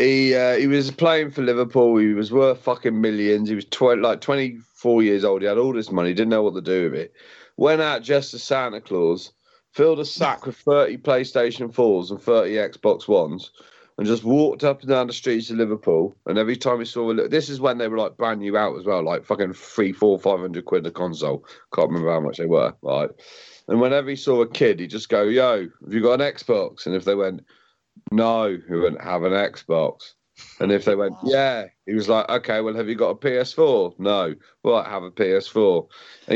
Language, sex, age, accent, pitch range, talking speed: English, male, 40-59, British, 105-145 Hz, 230 wpm